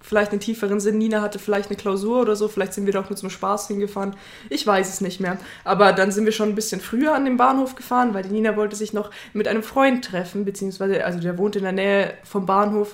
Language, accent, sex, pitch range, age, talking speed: German, German, female, 190-225 Hz, 20-39, 260 wpm